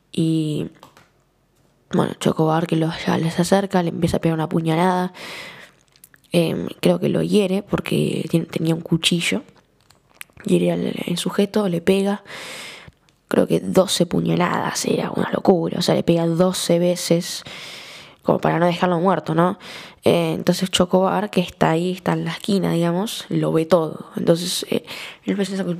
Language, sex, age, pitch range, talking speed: Spanish, female, 10-29, 165-190 Hz, 150 wpm